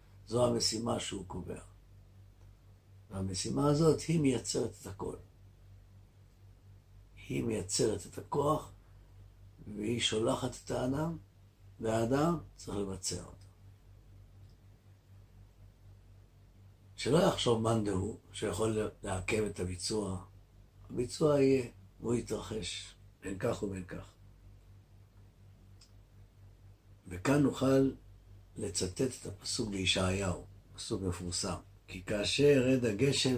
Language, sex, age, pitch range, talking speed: Hebrew, male, 60-79, 95-115 Hz, 90 wpm